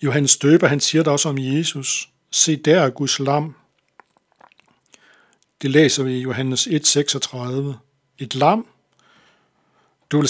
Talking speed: 135 wpm